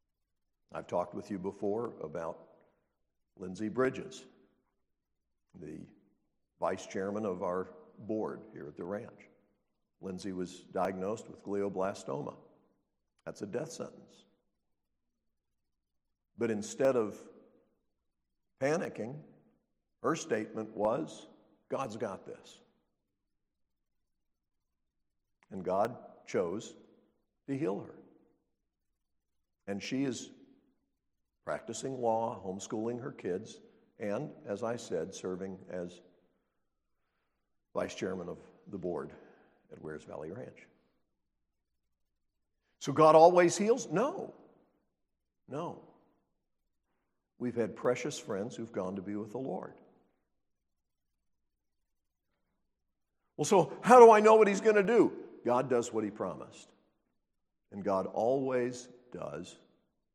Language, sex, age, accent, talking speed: English, male, 60-79, American, 105 wpm